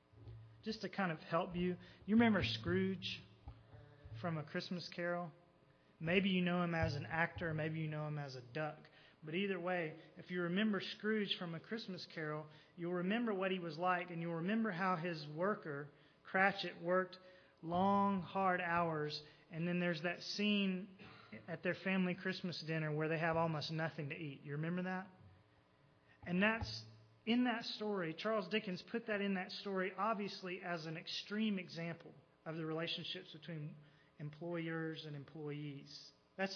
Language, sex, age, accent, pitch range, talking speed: English, male, 30-49, American, 145-185 Hz, 165 wpm